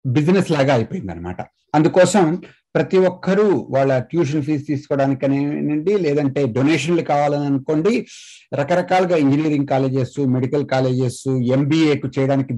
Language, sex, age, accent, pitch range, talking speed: Telugu, male, 60-79, native, 145-205 Hz, 105 wpm